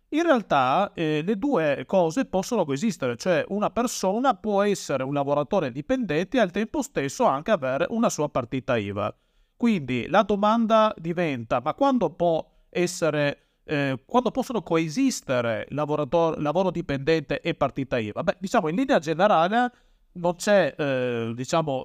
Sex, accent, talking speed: male, native, 145 wpm